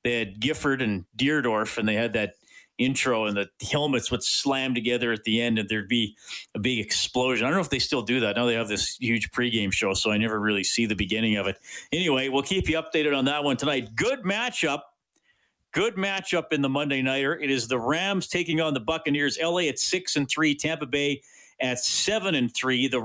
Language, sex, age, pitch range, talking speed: English, male, 40-59, 120-145 Hz, 225 wpm